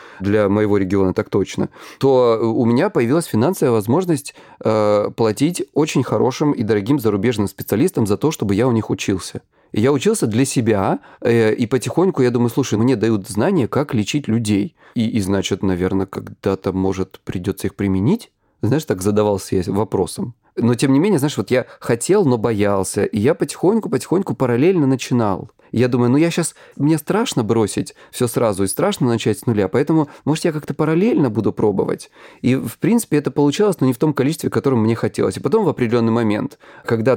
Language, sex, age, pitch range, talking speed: Russian, male, 30-49, 105-140 Hz, 180 wpm